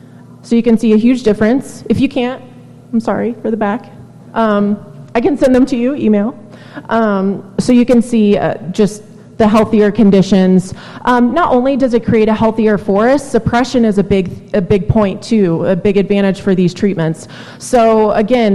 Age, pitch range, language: 30-49, 180-225 Hz, English